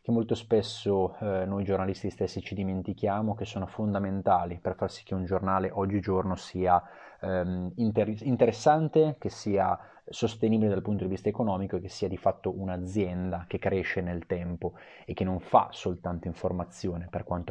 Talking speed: 160 wpm